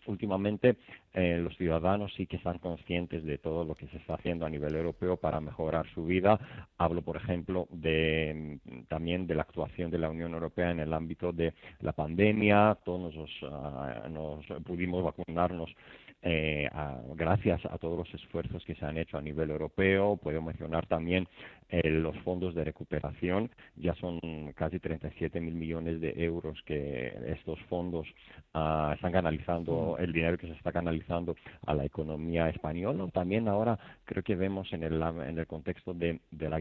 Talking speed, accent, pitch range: 170 wpm, Spanish, 80-90 Hz